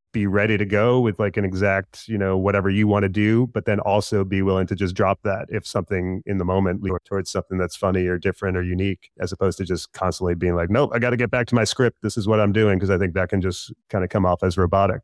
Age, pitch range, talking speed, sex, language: 30-49, 95-110 Hz, 285 wpm, male, English